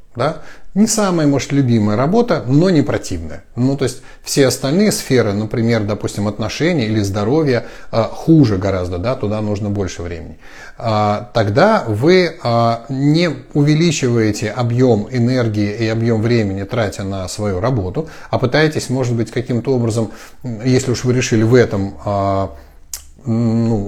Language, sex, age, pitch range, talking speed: Russian, male, 30-49, 105-135 Hz, 120 wpm